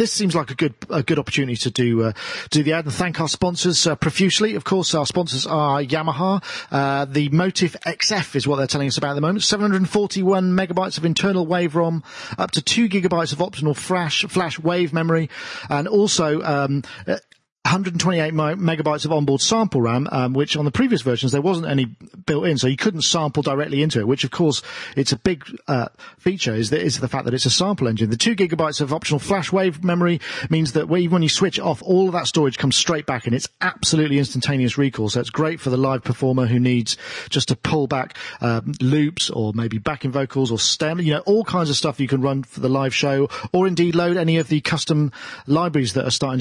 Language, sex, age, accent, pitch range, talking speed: English, male, 40-59, British, 130-170 Hz, 225 wpm